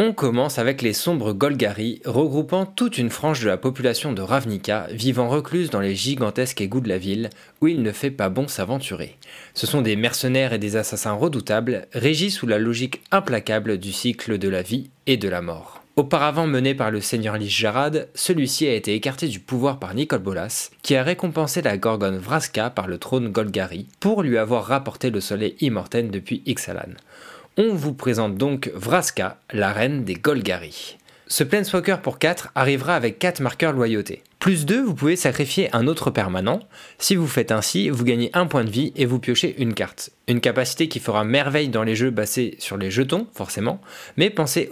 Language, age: French, 20-39